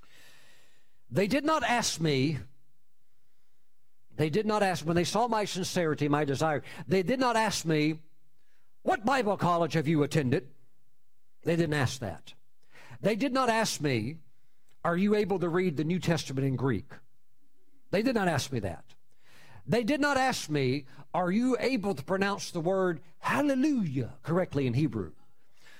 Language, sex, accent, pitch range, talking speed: English, male, American, 140-220 Hz, 160 wpm